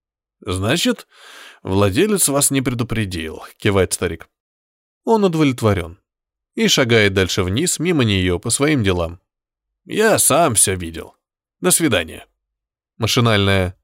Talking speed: 110 wpm